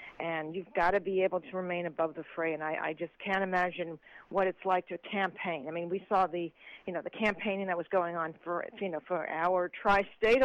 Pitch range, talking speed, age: 180-215 Hz, 235 wpm, 50-69